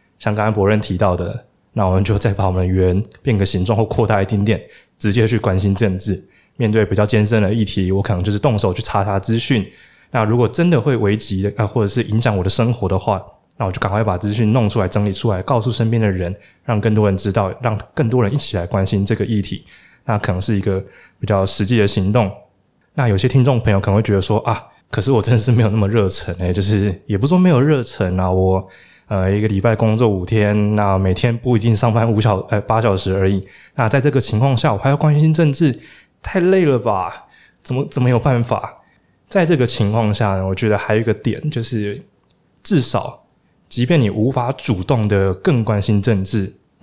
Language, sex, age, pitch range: Chinese, male, 20-39, 100-120 Hz